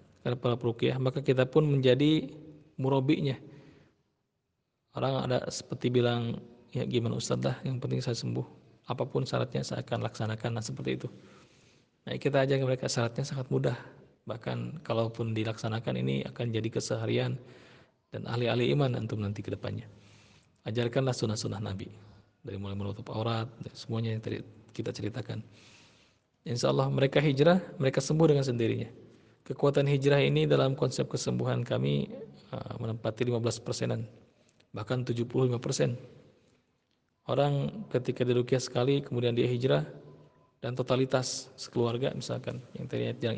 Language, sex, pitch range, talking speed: Malay, male, 110-125 Hz, 125 wpm